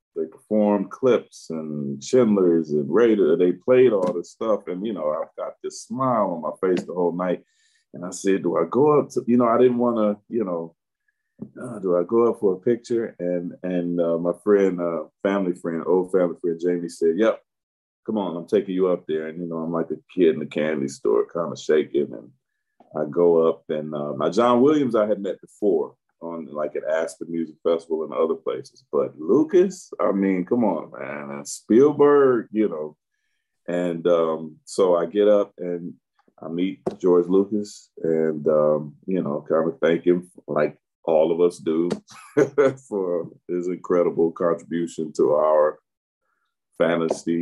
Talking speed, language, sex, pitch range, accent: 185 wpm, English, male, 80-115 Hz, American